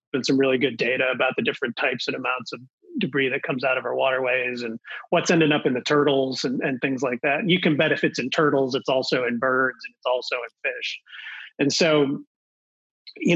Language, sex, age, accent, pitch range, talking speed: English, male, 30-49, American, 130-160 Hz, 230 wpm